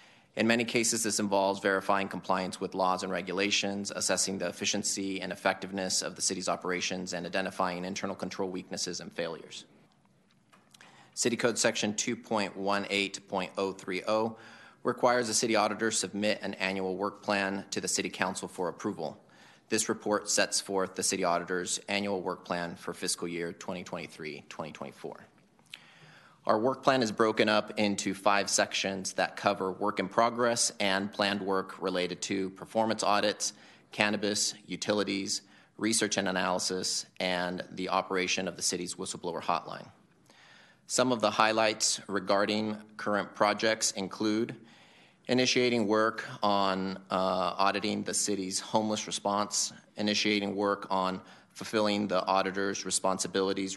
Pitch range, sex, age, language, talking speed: 95-105 Hz, male, 30-49, English, 130 wpm